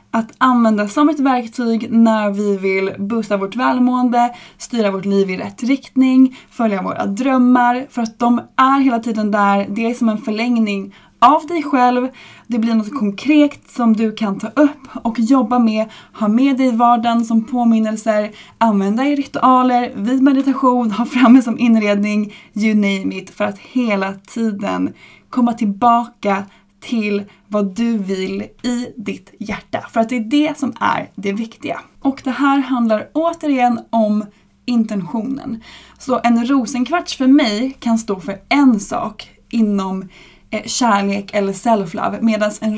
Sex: female